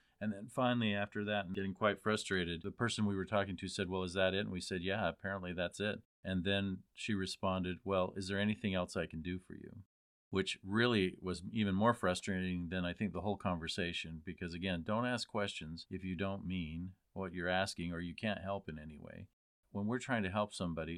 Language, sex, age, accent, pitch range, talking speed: English, male, 40-59, American, 85-100 Hz, 225 wpm